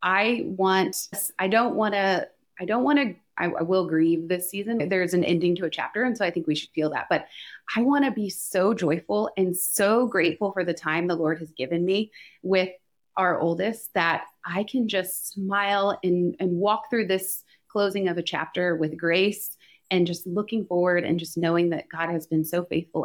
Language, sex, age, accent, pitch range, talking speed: English, female, 30-49, American, 170-220 Hz, 205 wpm